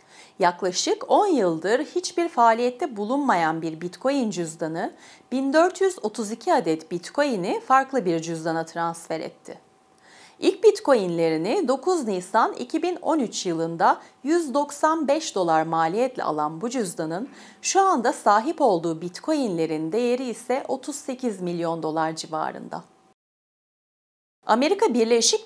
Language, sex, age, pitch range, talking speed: Turkish, female, 40-59, 170-275 Hz, 100 wpm